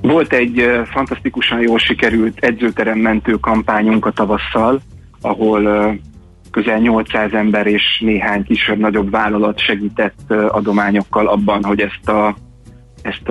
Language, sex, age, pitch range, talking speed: Hungarian, male, 30-49, 100-110 Hz, 105 wpm